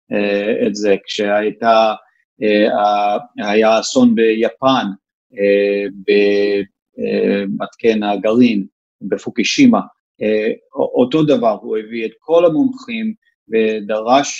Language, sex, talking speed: Hebrew, male, 65 wpm